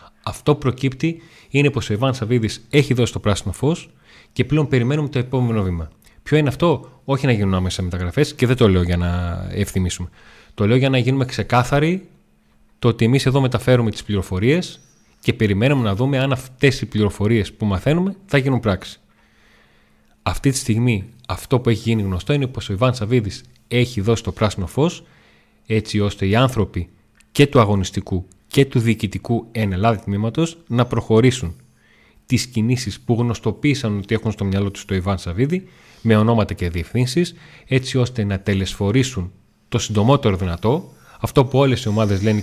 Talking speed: 170 wpm